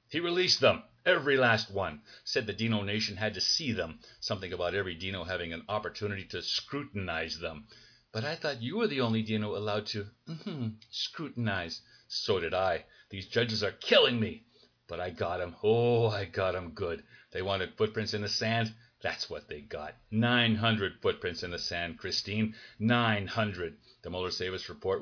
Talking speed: 175 wpm